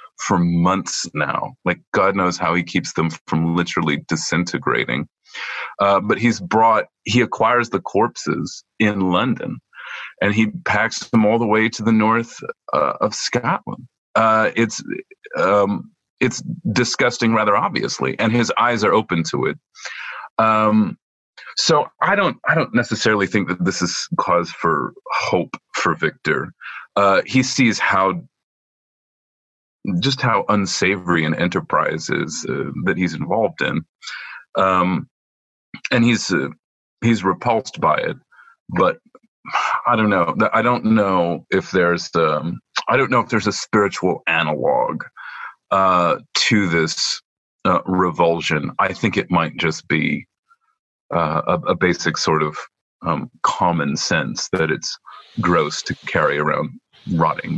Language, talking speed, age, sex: English, 140 wpm, 40-59, male